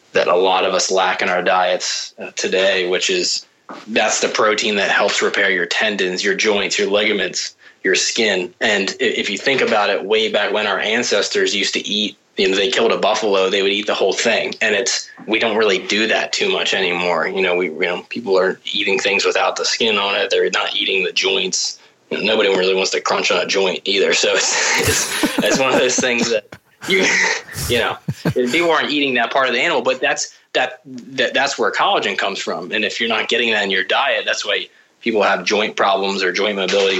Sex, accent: male, American